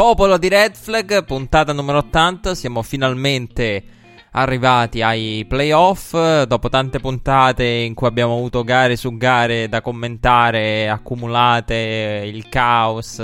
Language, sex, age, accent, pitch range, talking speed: Italian, male, 20-39, native, 110-130 Hz, 120 wpm